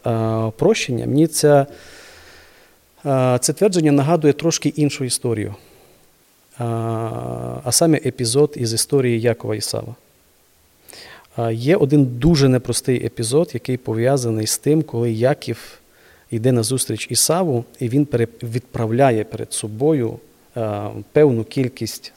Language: Ukrainian